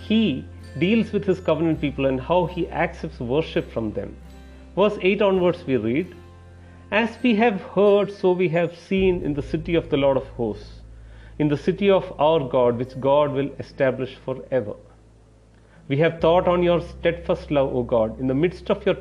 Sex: male